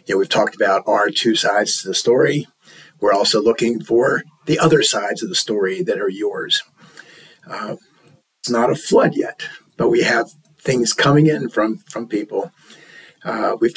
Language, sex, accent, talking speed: English, male, American, 170 wpm